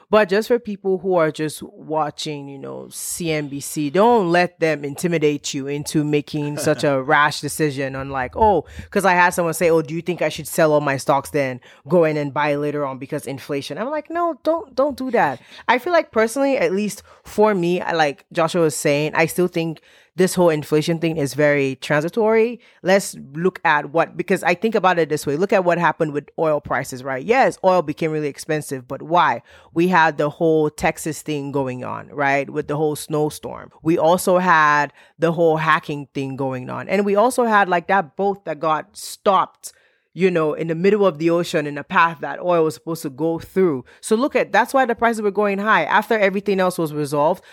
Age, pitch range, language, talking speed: 20-39, 150-195 Hz, English, 215 wpm